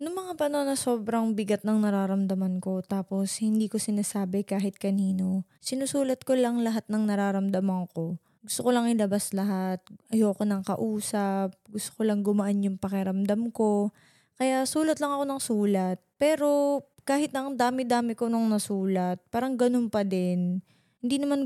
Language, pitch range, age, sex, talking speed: English, 200-255 Hz, 20-39, female, 155 wpm